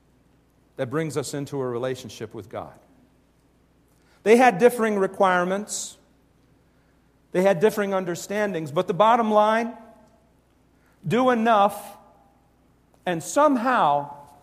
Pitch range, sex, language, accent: 145-200 Hz, male, English, American